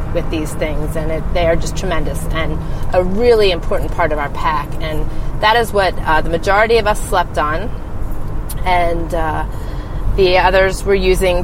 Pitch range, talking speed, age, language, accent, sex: 130-185 Hz, 175 wpm, 30-49, English, American, female